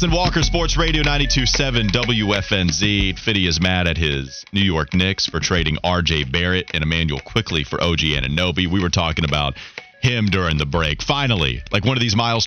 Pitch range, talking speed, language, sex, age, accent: 85-115 Hz, 180 wpm, English, male, 30-49, American